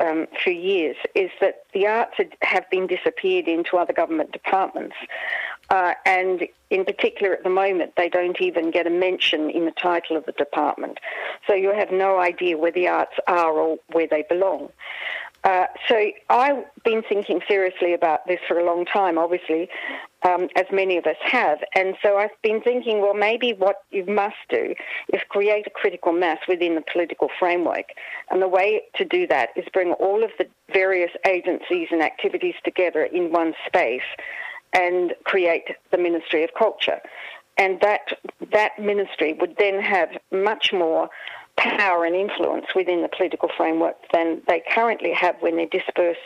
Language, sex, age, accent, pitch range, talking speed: English, female, 50-69, Australian, 170-220 Hz, 175 wpm